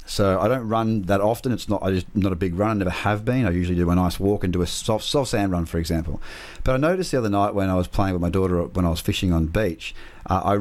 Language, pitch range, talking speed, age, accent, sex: English, 90-115 Hz, 300 wpm, 30-49, Australian, male